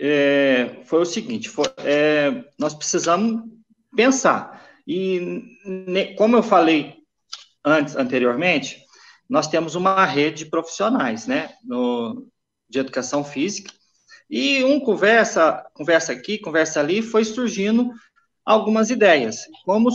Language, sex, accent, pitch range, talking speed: Portuguese, male, Brazilian, 155-225 Hz, 115 wpm